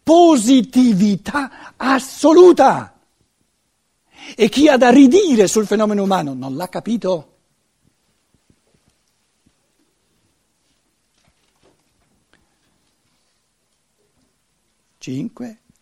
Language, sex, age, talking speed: Italian, male, 60-79, 55 wpm